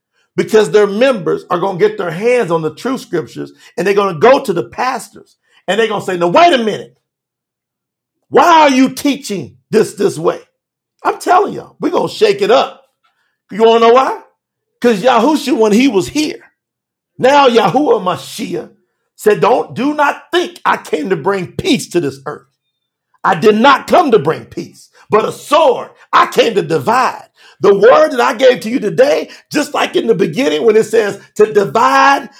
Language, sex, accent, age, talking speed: English, male, American, 50-69, 195 wpm